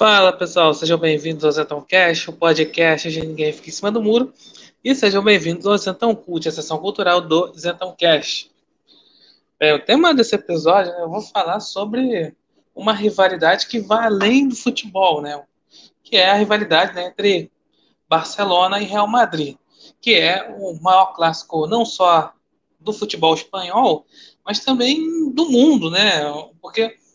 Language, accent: Portuguese, Brazilian